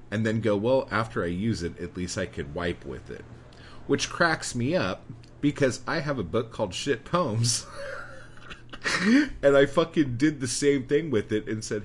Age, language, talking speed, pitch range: 30-49, English, 190 wpm, 90-120 Hz